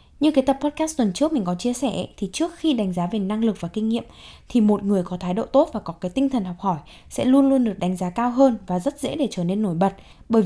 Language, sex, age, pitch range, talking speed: Vietnamese, female, 10-29, 185-245 Hz, 300 wpm